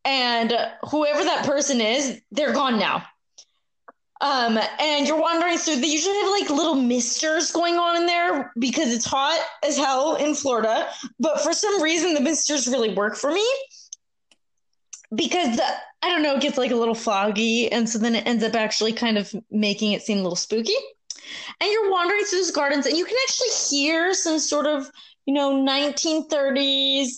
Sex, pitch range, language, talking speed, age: female, 235-315 Hz, English, 180 wpm, 20-39